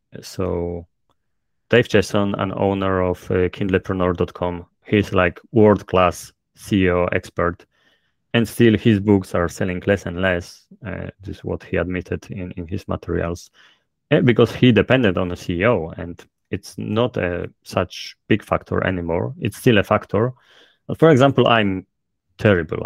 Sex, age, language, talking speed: male, 30-49, English, 140 wpm